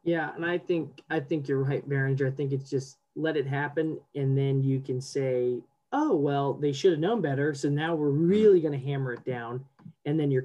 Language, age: English, 20-39